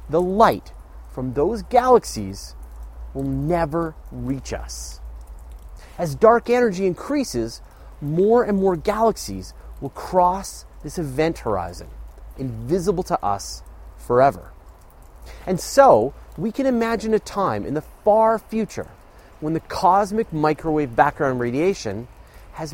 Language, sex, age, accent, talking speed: English, male, 30-49, American, 115 wpm